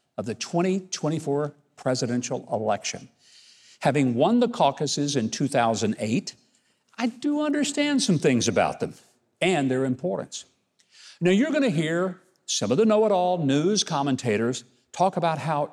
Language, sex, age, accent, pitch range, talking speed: English, male, 60-79, American, 130-185 Hz, 130 wpm